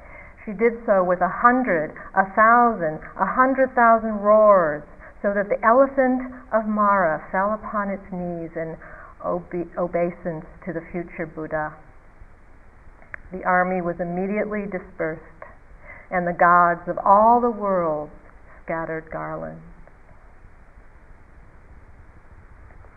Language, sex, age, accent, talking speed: English, female, 60-79, American, 110 wpm